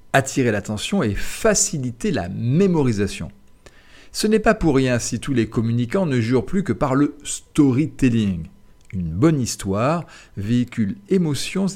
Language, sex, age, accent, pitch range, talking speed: French, male, 40-59, French, 110-160 Hz, 140 wpm